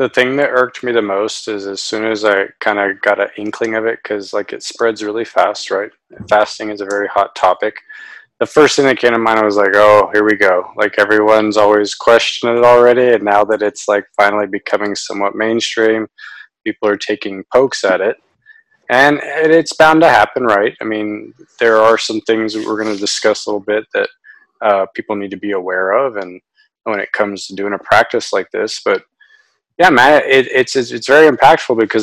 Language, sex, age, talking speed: English, male, 20-39, 215 wpm